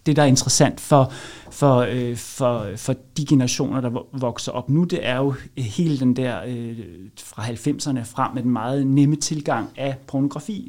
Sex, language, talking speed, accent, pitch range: male, Danish, 170 wpm, native, 130-150 Hz